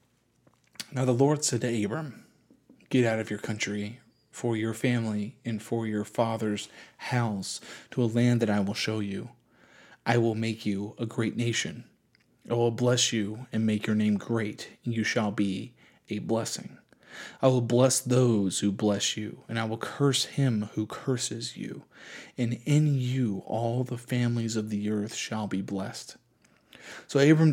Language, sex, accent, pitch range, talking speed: English, male, American, 105-120 Hz, 170 wpm